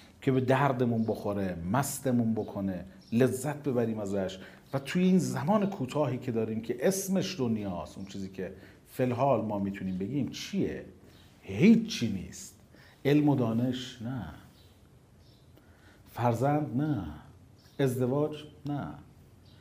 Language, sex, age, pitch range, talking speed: Persian, male, 40-59, 110-150 Hz, 115 wpm